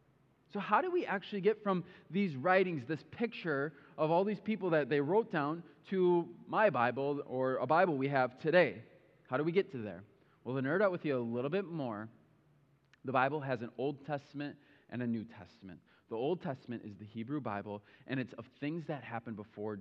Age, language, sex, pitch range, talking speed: 20-39, English, male, 120-165 Hz, 205 wpm